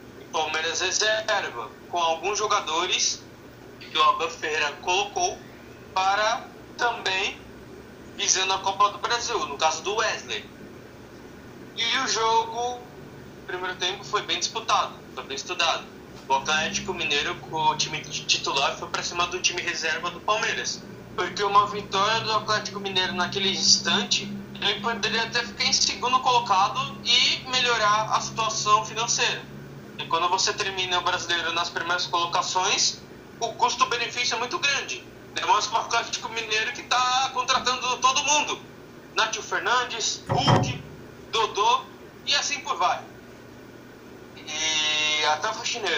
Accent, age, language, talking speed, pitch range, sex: Brazilian, 20-39, Portuguese, 130 wpm, 160-230 Hz, male